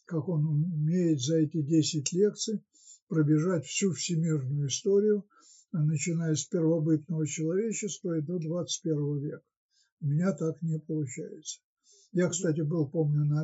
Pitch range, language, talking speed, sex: 150-190 Hz, Russian, 130 wpm, male